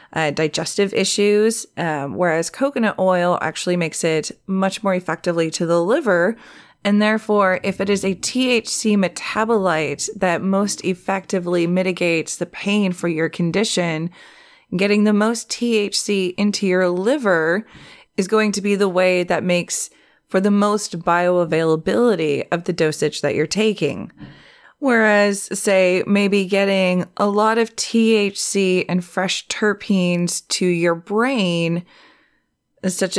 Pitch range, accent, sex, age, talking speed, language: 170-205 Hz, American, female, 20-39, 130 wpm, English